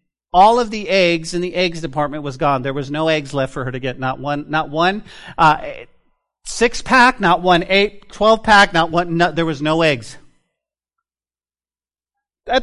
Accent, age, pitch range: American, 40-59, 130-185 Hz